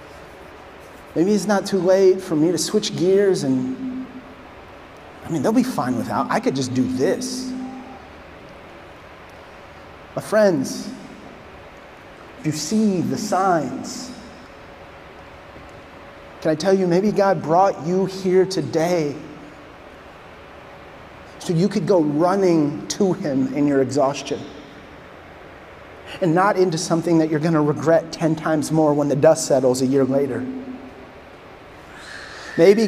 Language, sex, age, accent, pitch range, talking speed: English, male, 30-49, American, 150-195 Hz, 125 wpm